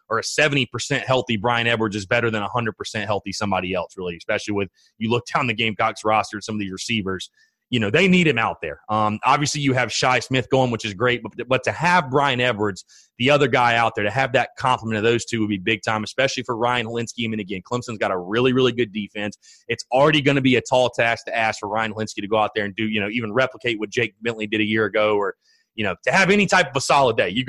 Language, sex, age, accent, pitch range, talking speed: English, male, 30-49, American, 110-140 Hz, 265 wpm